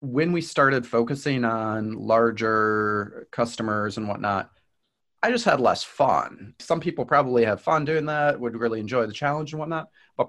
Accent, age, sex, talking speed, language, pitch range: American, 30-49, male, 170 wpm, English, 100-125 Hz